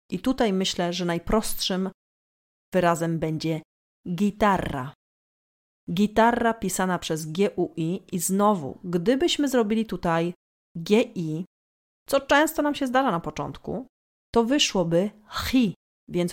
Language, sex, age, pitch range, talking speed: Polish, female, 30-49, 170-225 Hz, 105 wpm